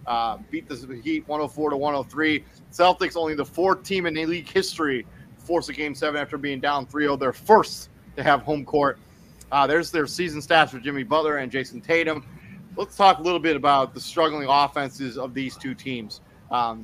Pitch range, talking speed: 130-160 Hz, 200 wpm